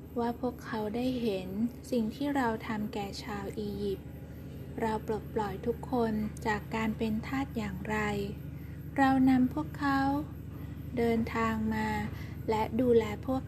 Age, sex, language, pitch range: 10-29, female, Thai, 150-245 Hz